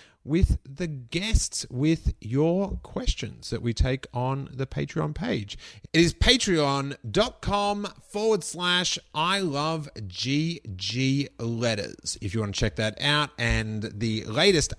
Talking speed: 120 wpm